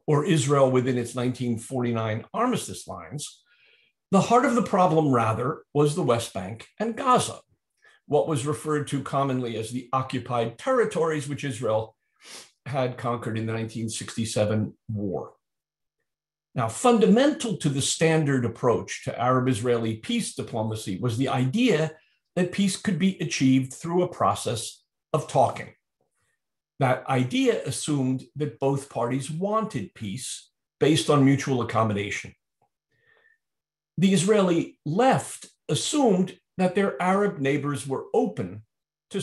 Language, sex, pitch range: English, male, 125-180 Hz